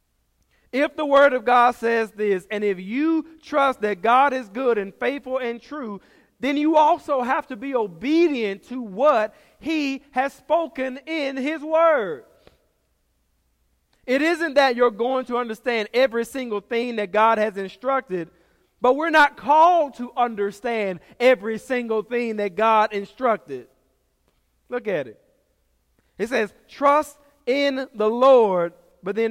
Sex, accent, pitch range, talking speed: male, American, 210-280 Hz, 145 wpm